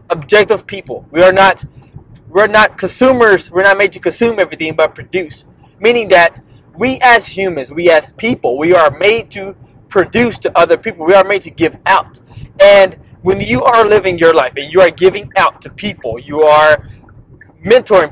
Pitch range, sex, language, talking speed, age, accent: 135-190 Hz, male, English, 180 wpm, 20-39, American